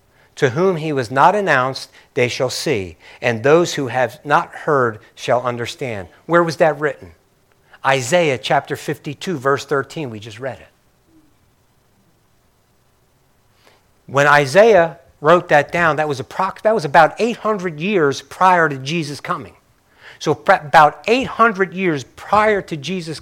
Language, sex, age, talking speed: English, male, 50-69, 140 wpm